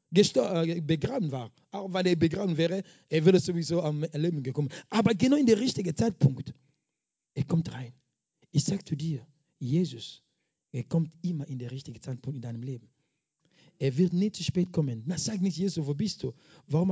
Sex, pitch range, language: male, 140-180 Hz, German